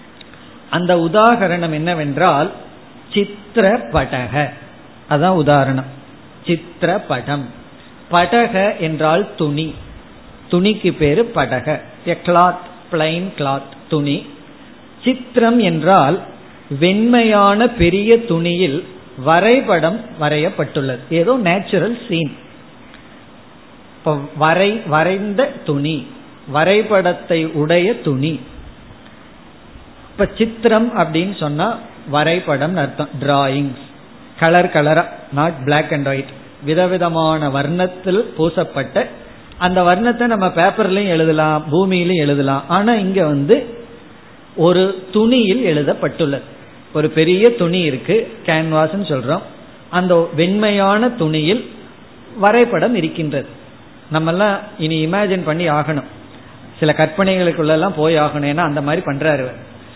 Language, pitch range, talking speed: Tamil, 150-195 Hz, 85 wpm